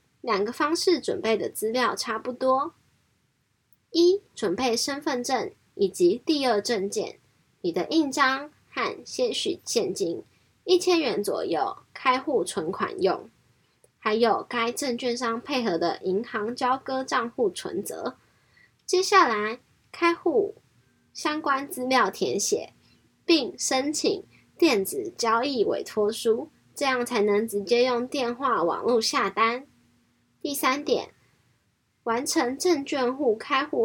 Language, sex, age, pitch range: Chinese, female, 10-29, 225-310 Hz